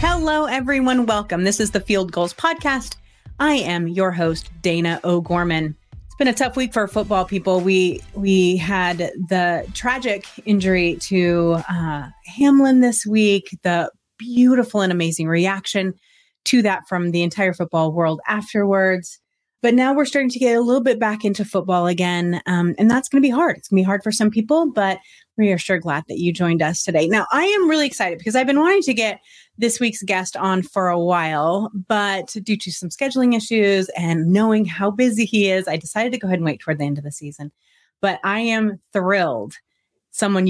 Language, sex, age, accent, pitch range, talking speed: English, female, 30-49, American, 175-225 Hz, 195 wpm